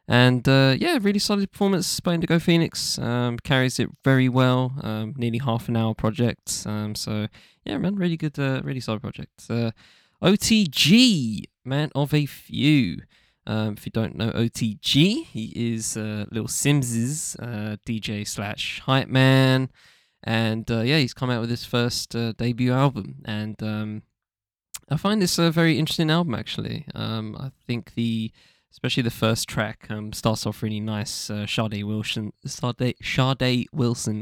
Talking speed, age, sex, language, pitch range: 165 wpm, 20-39, male, English, 110-135 Hz